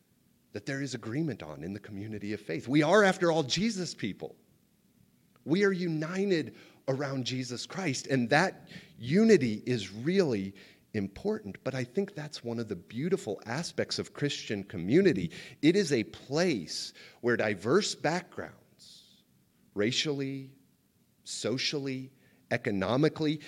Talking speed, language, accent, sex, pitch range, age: 130 wpm, English, American, male, 115-175 Hz, 40-59